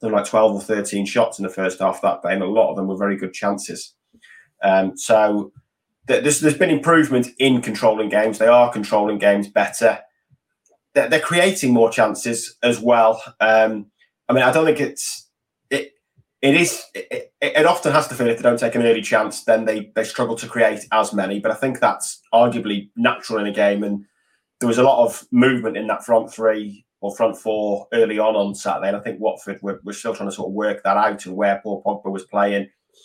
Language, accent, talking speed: English, British, 220 wpm